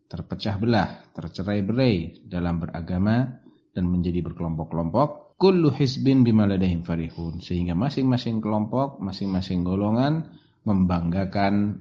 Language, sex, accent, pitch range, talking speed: Indonesian, male, native, 85-120 Hz, 95 wpm